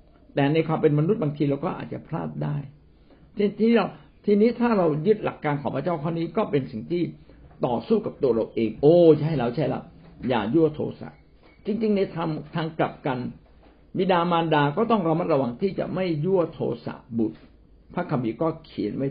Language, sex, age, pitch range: Thai, male, 60-79, 115-170 Hz